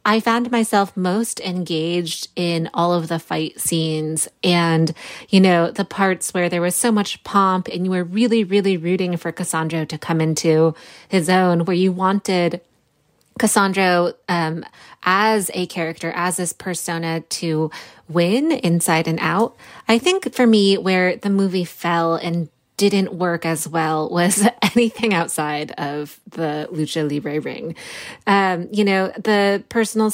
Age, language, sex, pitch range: 20-39, English, female, 165-195 Hz